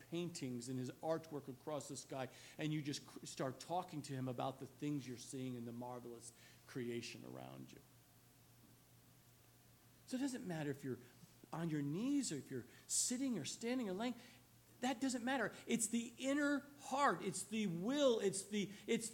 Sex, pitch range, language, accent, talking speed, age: male, 140-235 Hz, English, American, 170 wpm, 50-69